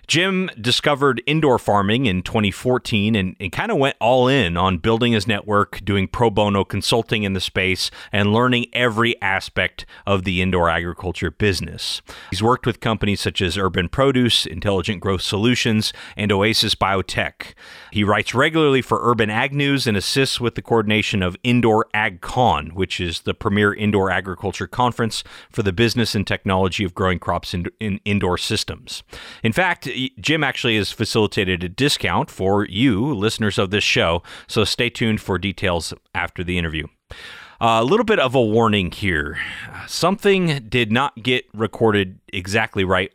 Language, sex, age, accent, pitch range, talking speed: English, male, 30-49, American, 95-120 Hz, 165 wpm